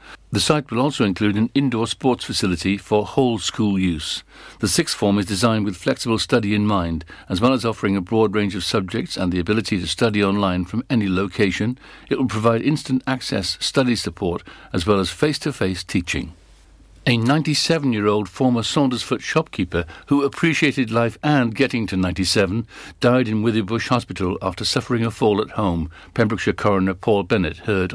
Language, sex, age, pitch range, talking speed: English, male, 60-79, 95-120 Hz, 180 wpm